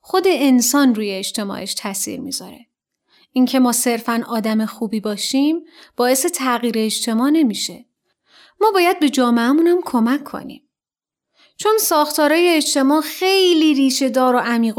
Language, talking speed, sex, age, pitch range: Persian, 125 wpm, female, 30-49, 235-320 Hz